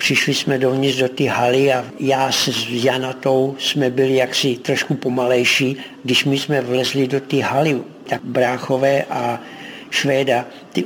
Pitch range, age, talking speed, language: 125-140 Hz, 60-79, 150 wpm, Czech